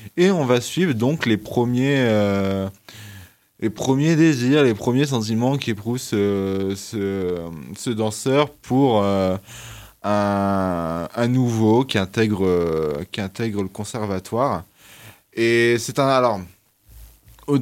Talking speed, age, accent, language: 125 wpm, 20-39, French, French